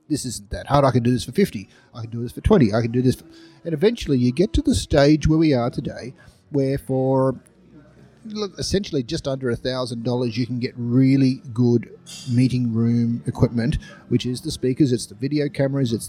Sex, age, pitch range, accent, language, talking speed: male, 40-59, 125-155 Hz, Australian, English, 200 wpm